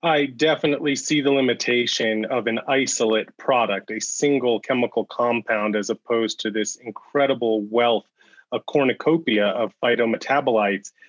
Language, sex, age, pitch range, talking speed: English, male, 30-49, 110-135 Hz, 125 wpm